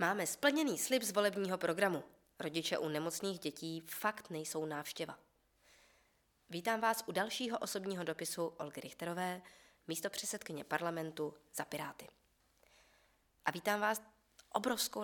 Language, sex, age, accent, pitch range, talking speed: Czech, female, 20-39, native, 160-200 Hz, 120 wpm